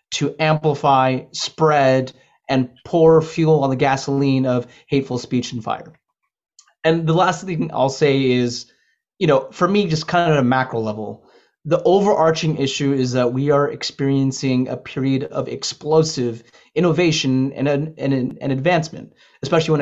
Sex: male